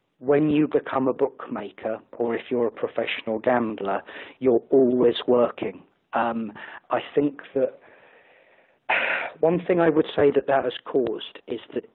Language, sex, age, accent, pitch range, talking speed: English, male, 40-59, British, 120-150 Hz, 145 wpm